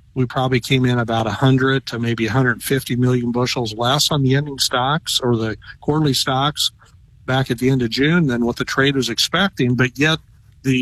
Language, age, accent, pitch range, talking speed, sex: English, 50-69, American, 115-135 Hz, 195 wpm, male